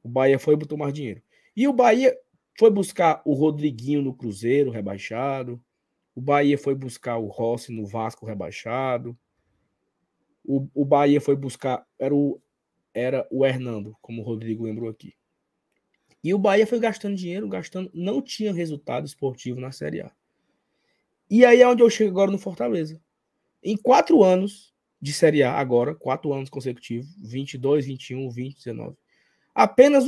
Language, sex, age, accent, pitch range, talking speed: Portuguese, male, 20-39, Brazilian, 135-210 Hz, 155 wpm